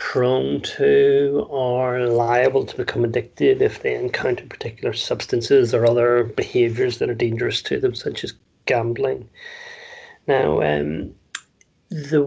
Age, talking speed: 40-59, 125 wpm